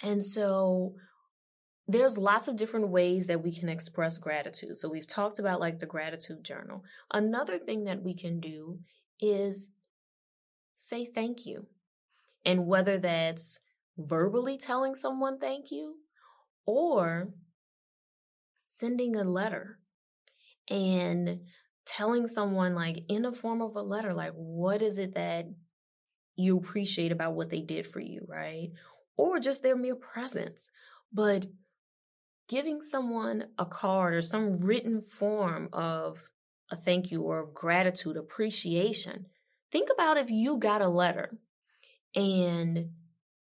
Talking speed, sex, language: 135 wpm, female, English